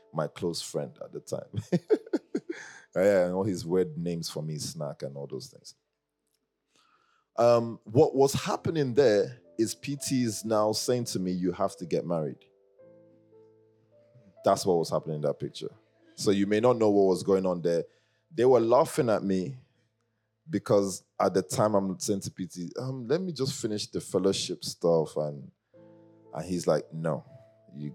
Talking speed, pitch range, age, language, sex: 170 wpm, 95-135 Hz, 20-39, English, male